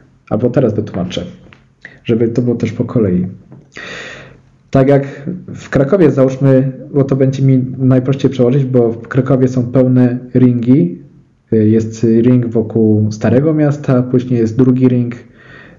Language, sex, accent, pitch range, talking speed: Polish, male, native, 115-145 Hz, 135 wpm